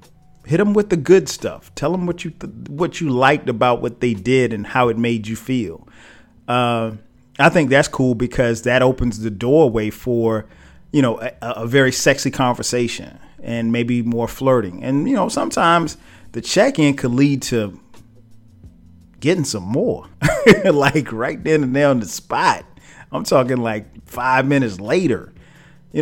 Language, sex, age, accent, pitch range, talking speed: English, male, 40-59, American, 115-155 Hz, 170 wpm